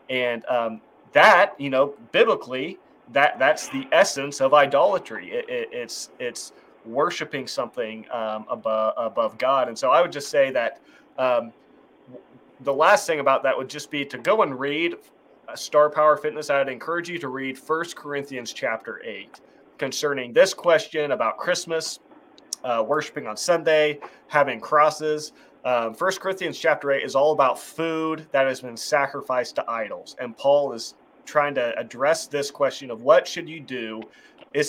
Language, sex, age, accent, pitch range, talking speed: English, male, 20-39, American, 130-160 Hz, 165 wpm